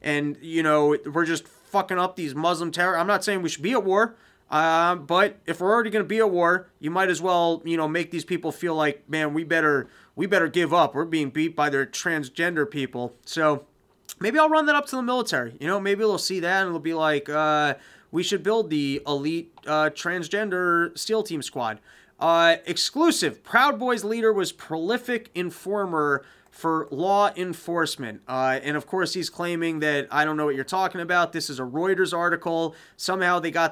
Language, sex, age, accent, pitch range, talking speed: English, male, 30-49, American, 145-180 Hz, 205 wpm